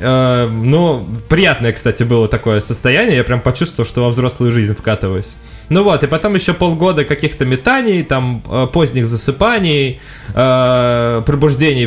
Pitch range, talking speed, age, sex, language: 120-150 Hz, 130 wpm, 20-39, male, Russian